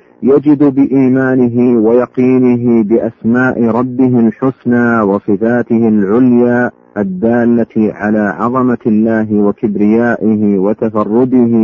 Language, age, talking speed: Arabic, 50-69, 70 wpm